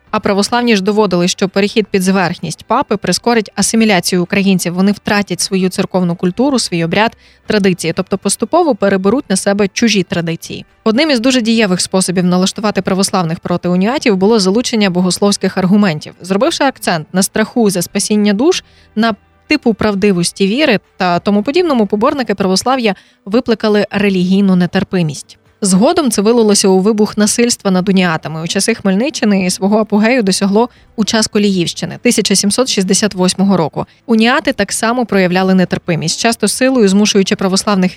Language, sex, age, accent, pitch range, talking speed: Ukrainian, female, 20-39, native, 185-225 Hz, 135 wpm